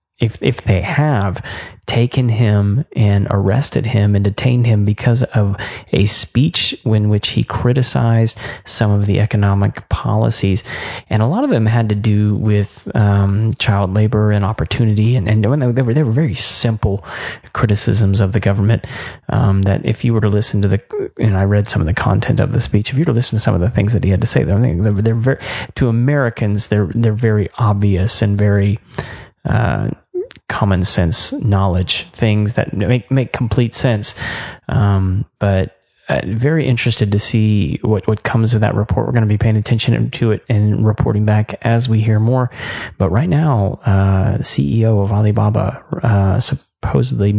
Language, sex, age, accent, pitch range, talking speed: English, male, 30-49, American, 100-120 Hz, 185 wpm